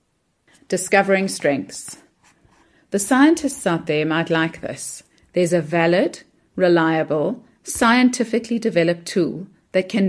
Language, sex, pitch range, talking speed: English, female, 165-220 Hz, 105 wpm